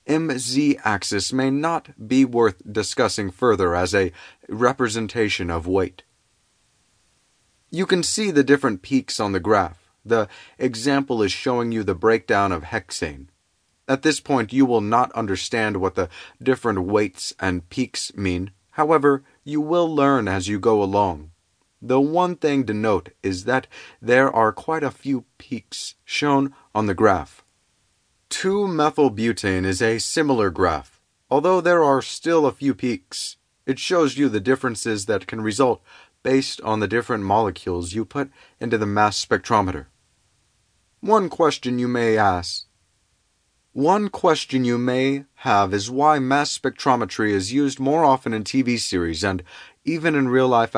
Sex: male